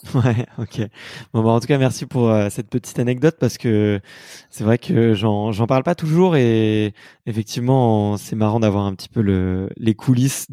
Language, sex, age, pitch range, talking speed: French, male, 20-39, 110-130 Hz, 195 wpm